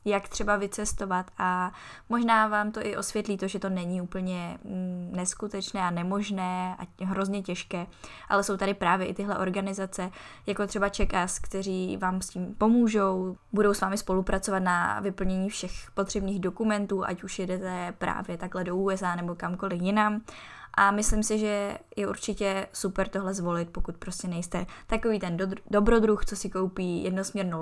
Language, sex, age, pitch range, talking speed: Czech, female, 10-29, 180-205 Hz, 160 wpm